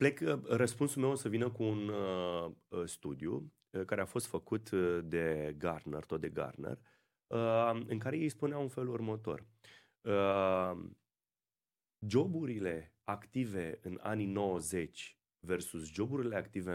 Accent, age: native, 30-49